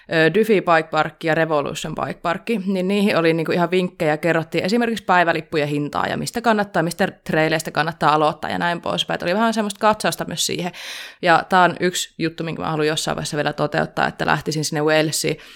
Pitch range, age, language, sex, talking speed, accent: 155-195 Hz, 20-39, Finnish, female, 185 wpm, native